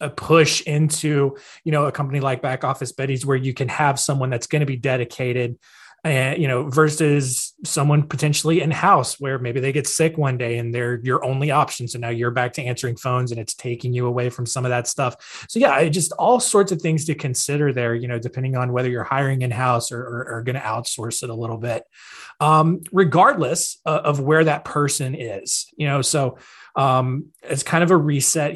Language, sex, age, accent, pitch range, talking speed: English, male, 20-39, American, 125-160 Hz, 210 wpm